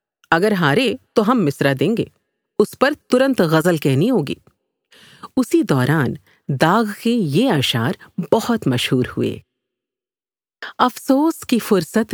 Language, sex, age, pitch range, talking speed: Urdu, female, 50-69, 140-220 Hz, 125 wpm